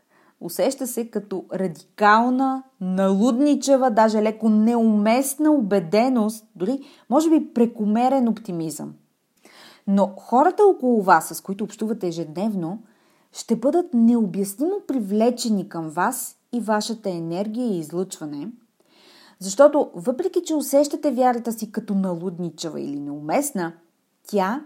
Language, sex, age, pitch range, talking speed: Bulgarian, female, 30-49, 185-255 Hz, 105 wpm